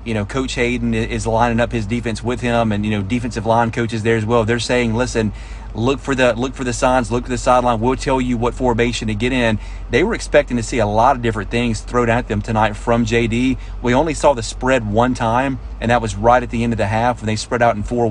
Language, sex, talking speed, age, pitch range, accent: English, male, 270 wpm, 30-49, 115-130 Hz, American